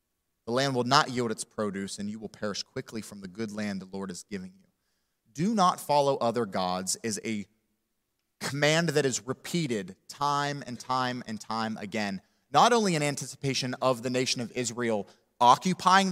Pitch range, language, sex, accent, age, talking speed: 135-200 Hz, English, male, American, 30-49, 180 wpm